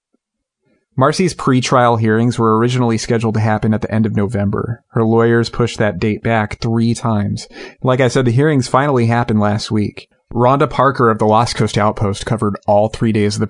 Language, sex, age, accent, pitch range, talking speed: English, male, 30-49, American, 105-120 Hz, 190 wpm